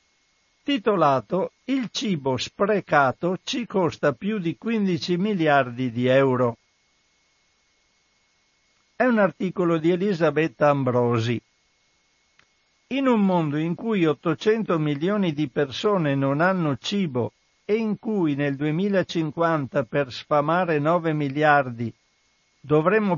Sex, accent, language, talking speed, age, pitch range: male, native, Italian, 105 wpm, 60-79, 145-190 Hz